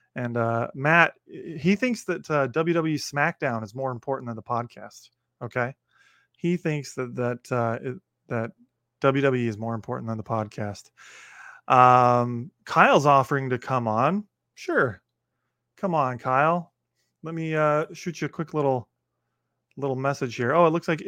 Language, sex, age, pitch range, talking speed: English, male, 20-39, 120-155 Hz, 155 wpm